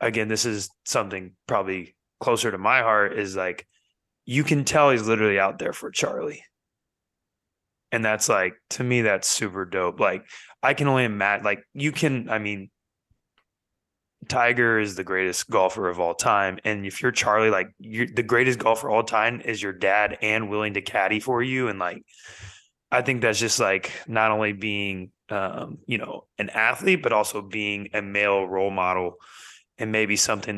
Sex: male